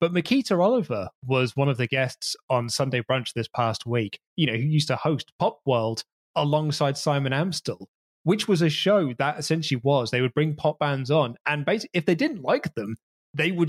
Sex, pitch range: male, 125-160 Hz